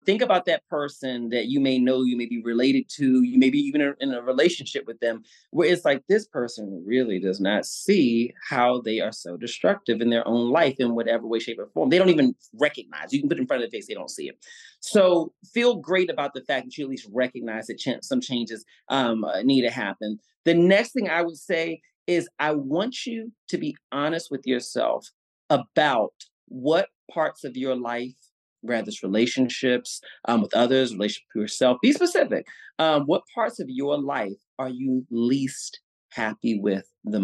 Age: 30-49